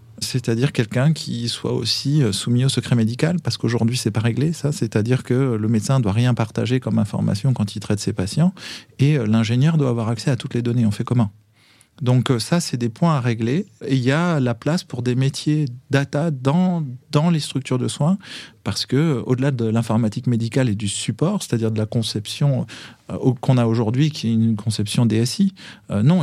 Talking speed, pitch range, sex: 195 wpm, 115-145 Hz, male